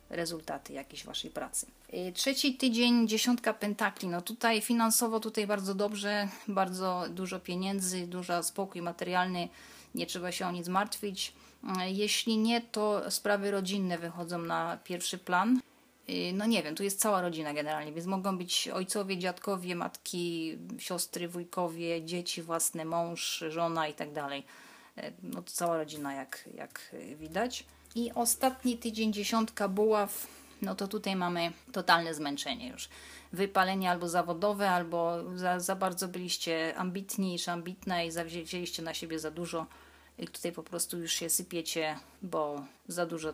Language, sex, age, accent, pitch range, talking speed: Polish, female, 30-49, native, 165-205 Hz, 145 wpm